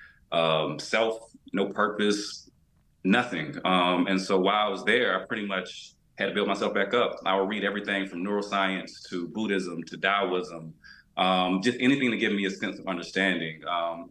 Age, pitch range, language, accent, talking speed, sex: 30-49, 90-105 Hz, English, American, 180 wpm, male